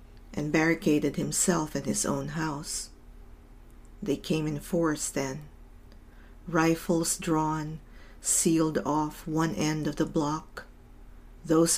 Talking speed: 110 wpm